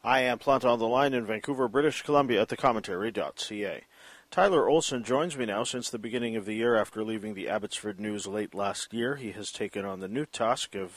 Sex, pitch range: male, 95-115 Hz